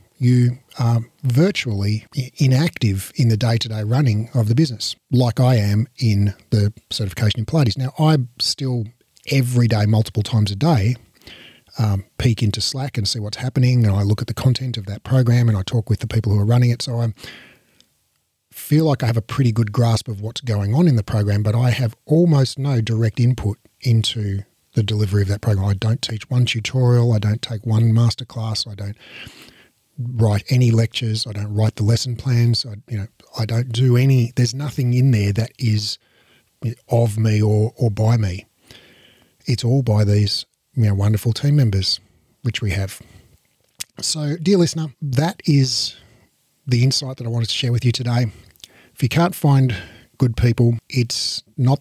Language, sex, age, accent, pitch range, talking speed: English, male, 40-59, Australian, 110-125 Hz, 185 wpm